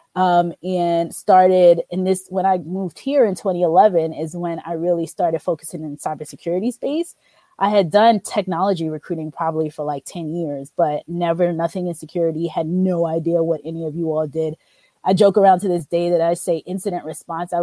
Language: English